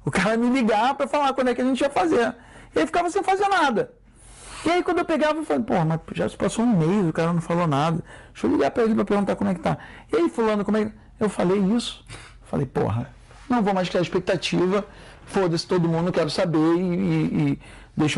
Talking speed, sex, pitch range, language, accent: 245 wpm, male, 165-230 Hz, Portuguese, Brazilian